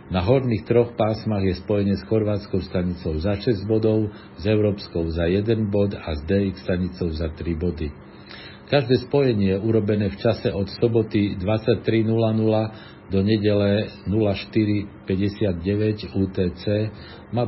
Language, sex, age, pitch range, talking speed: Slovak, male, 50-69, 90-110 Hz, 125 wpm